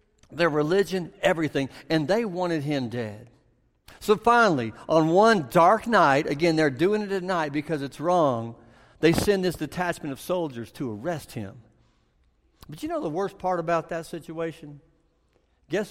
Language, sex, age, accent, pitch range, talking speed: English, male, 60-79, American, 130-180 Hz, 160 wpm